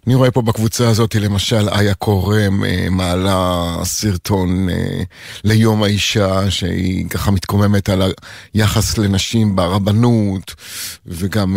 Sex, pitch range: male, 95-115 Hz